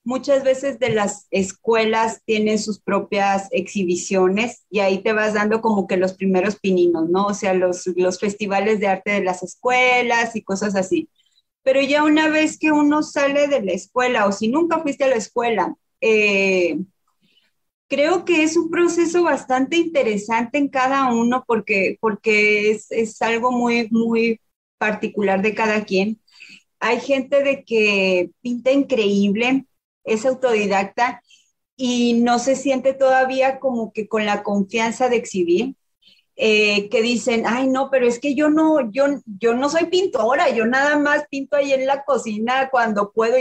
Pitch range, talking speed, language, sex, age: 210-270 Hz, 160 wpm, English, female, 30-49